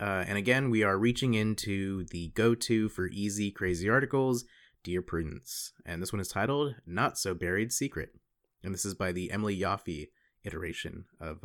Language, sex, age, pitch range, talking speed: English, male, 30-49, 90-125 Hz, 160 wpm